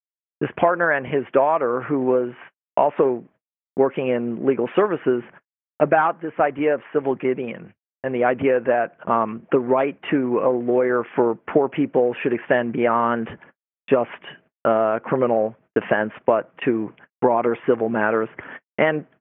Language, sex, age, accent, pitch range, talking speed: English, male, 40-59, American, 120-150 Hz, 135 wpm